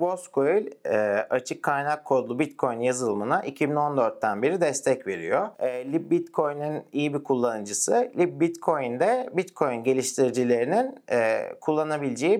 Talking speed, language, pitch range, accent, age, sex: 85 wpm, Turkish, 130-180 Hz, native, 40-59, male